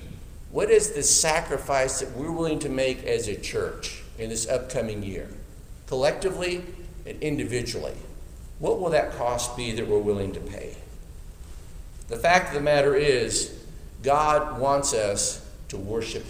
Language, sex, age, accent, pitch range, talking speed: English, male, 50-69, American, 115-190 Hz, 145 wpm